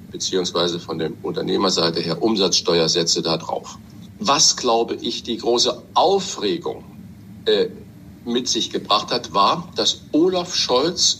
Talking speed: 125 wpm